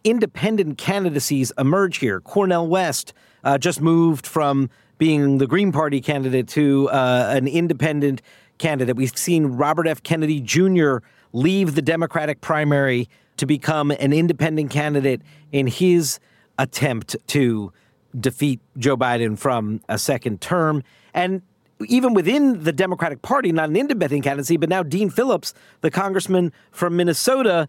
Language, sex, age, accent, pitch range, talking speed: English, male, 50-69, American, 140-175 Hz, 140 wpm